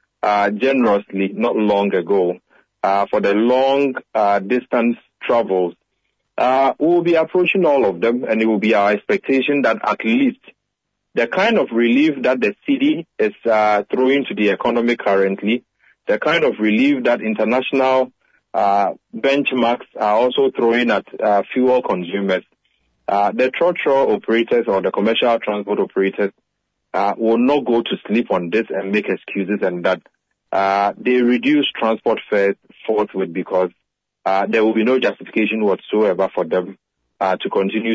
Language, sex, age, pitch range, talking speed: English, male, 30-49, 100-130 Hz, 155 wpm